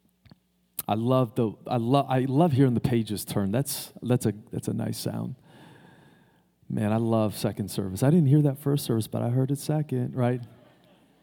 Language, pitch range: English, 110-150 Hz